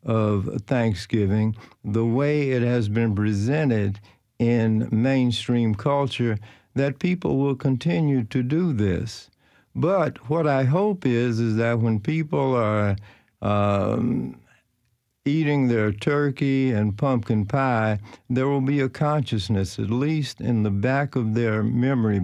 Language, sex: English, male